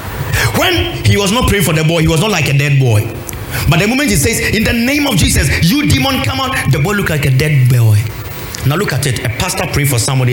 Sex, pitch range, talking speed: male, 115-150 Hz, 260 wpm